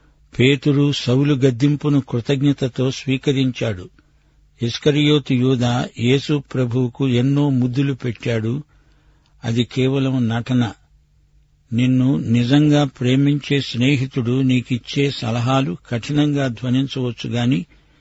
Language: Telugu